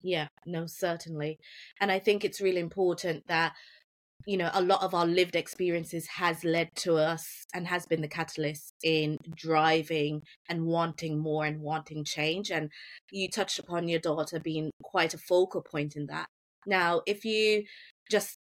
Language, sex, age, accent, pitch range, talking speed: English, female, 20-39, British, 155-190 Hz, 170 wpm